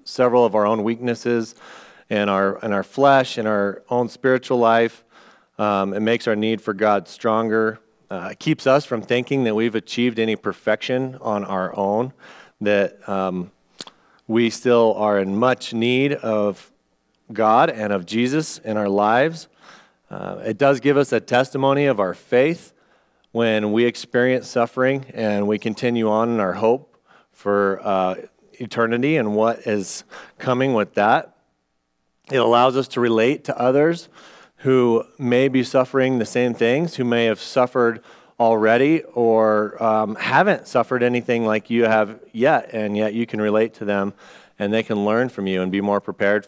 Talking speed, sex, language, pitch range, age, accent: 165 wpm, male, English, 105-125 Hz, 40-59, American